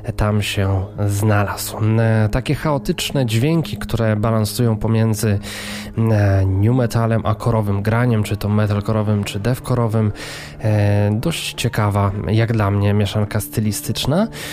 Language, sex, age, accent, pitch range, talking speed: Polish, male, 20-39, native, 105-115 Hz, 115 wpm